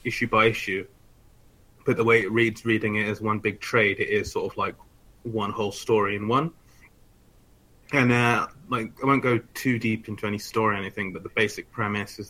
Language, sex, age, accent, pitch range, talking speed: English, male, 20-39, British, 105-115 Hz, 205 wpm